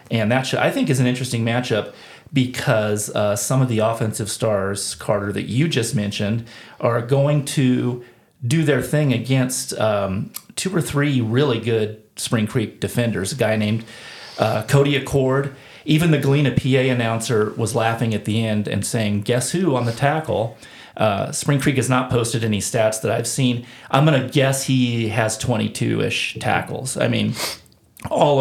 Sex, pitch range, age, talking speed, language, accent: male, 110-135 Hz, 40-59, 170 wpm, English, American